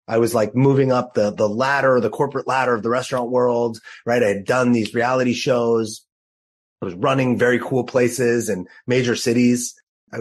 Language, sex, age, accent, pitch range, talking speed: English, male, 30-49, American, 110-130 Hz, 190 wpm